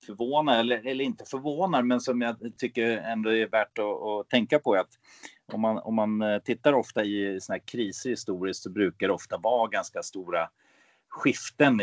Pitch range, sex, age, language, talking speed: 105-125 Hz, male, 30-49, Swedish, 180 wpm